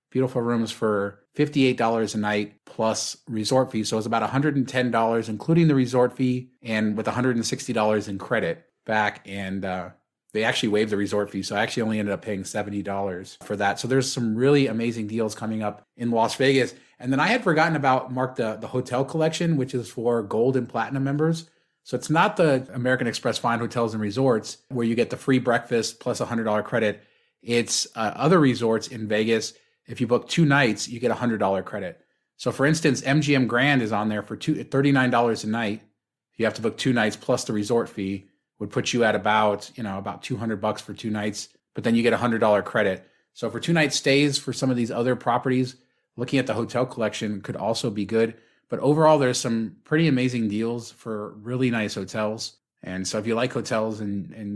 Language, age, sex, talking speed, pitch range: English, 30-49, male, 210 wpm, 110-130 Hz